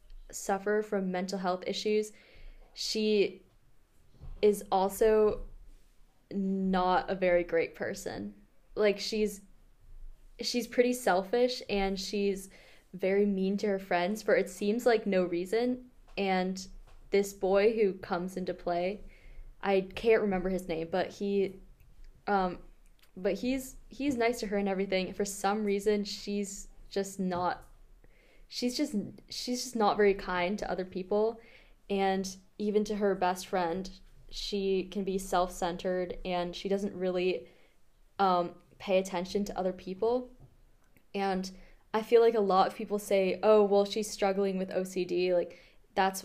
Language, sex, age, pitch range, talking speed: English, female, 10-29, 185-210 Hz, 140 wpm